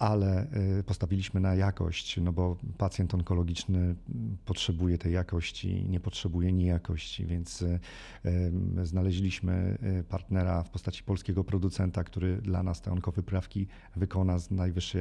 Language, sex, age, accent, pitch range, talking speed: Polish, male, 40-59, native, 90-100 Hz, 115 wpm